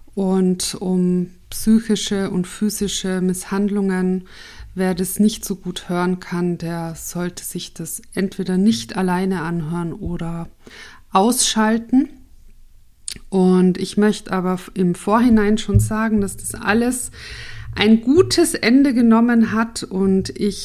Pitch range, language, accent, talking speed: 175-210 Hz, German, German, 120 wpm